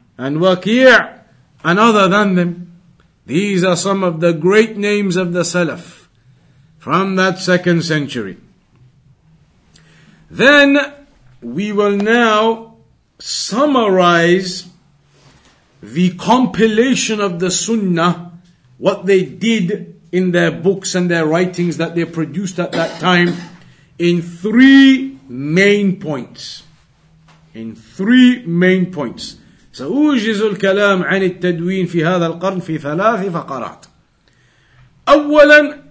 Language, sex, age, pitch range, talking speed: English, male, 50-69, 170-225 Hz, 105 wpm